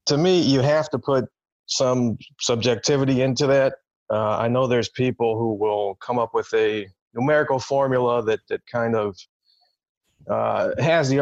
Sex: male